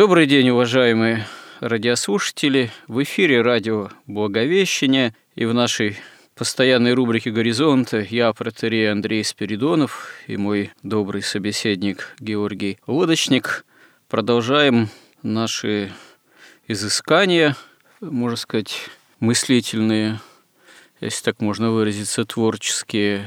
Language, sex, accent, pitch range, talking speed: Russian, male, native, 105-125 Hz, 90 wpm